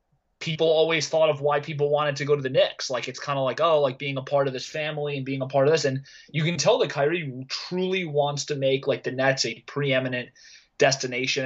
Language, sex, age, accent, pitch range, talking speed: English, male, 20-39, American, 130-155 Hz, 245 wpm